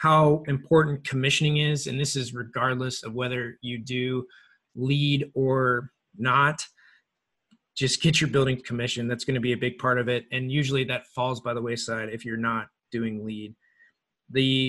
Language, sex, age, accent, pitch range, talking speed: English, male, 20-39, American, 120-135 Hz, 170 wpm